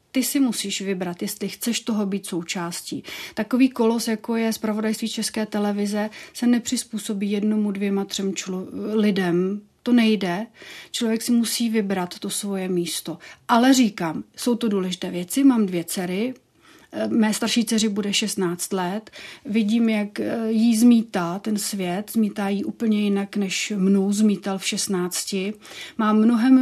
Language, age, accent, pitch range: Czech, 40-59, native, 195-230 Hz